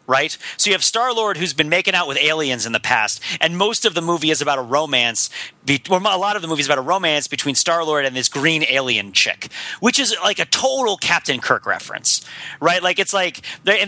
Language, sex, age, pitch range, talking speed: English, male, 30-49, 155-205 Hz, 230 wpm